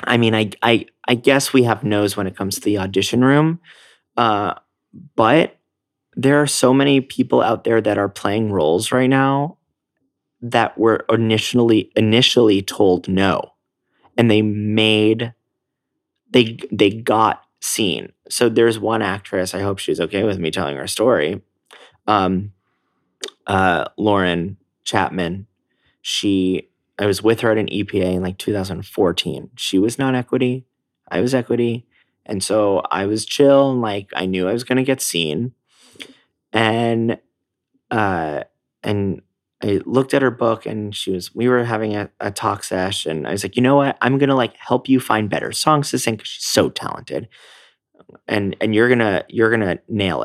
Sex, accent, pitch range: male, American, 95-120 Hz